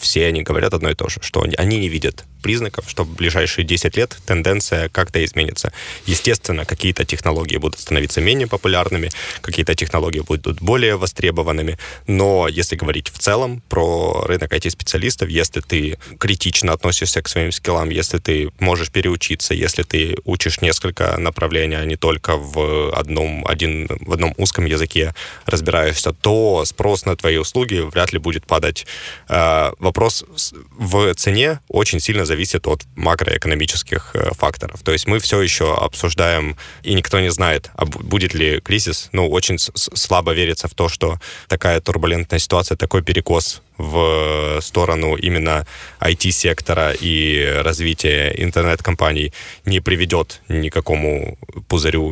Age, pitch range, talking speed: 20-39, 80-95 Hz, 140 wpm